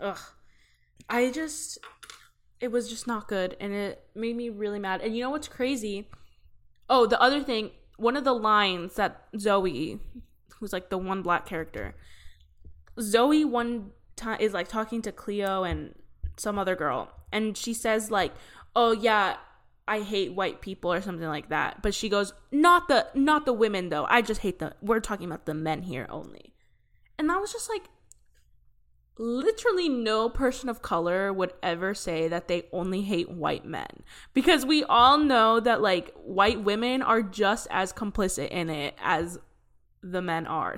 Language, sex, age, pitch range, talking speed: English, female, 10-29, 185-250 Hz, 175 wpm